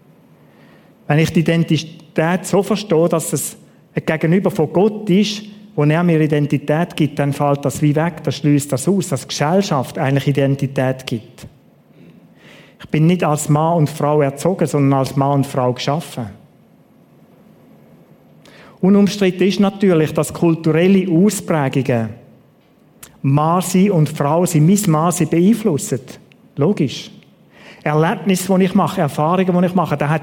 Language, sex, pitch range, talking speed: German, male, 150-185 Hz, 140 wpm